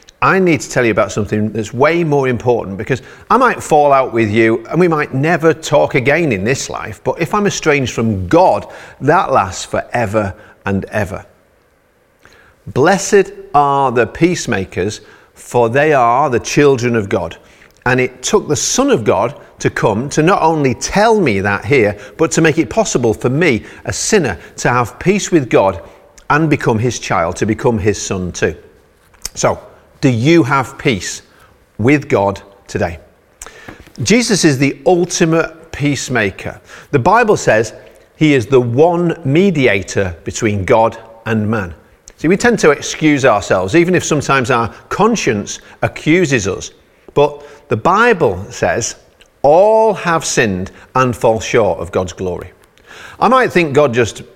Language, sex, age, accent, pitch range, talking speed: English, male, 40-59, British, 110-165 Hz, 160 wpm